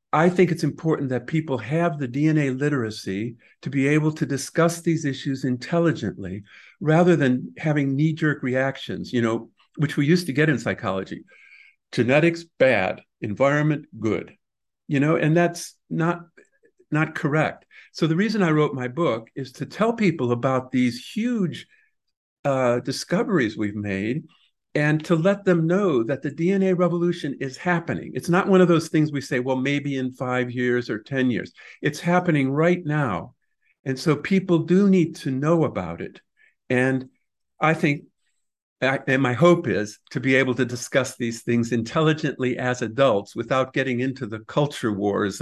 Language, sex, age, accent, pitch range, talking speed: Hebrew, male, 50-69, American, 125-165 Hz, 165 wpm